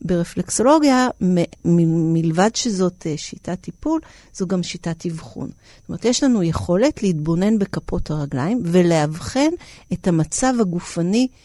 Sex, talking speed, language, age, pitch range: female, 110 wpm, Hebrew, 50-69, 160-195 Hz